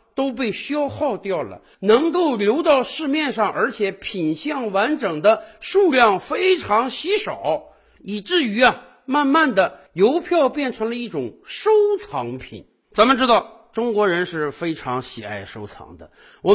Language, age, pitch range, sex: Chinese, 50-69, 180-285 Hz, male